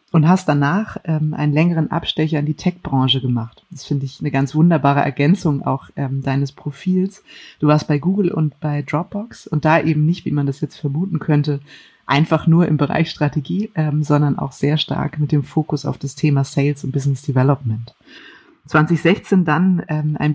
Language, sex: German, female